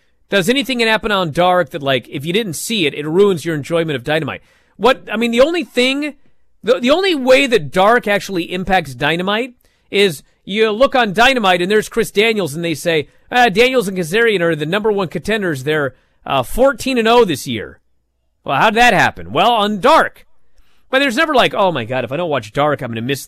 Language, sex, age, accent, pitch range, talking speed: English, male, 40-59, American, 130-220 Hz, 215 wpm